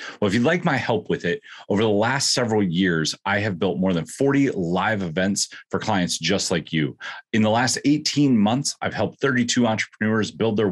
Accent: American